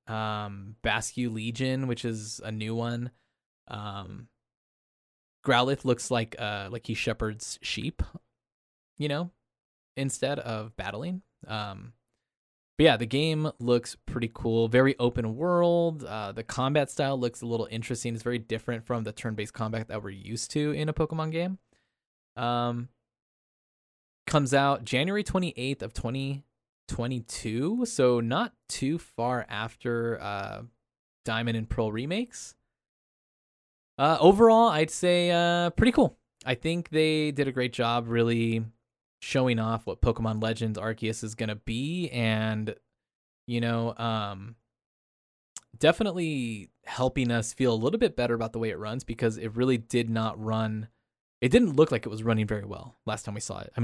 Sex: male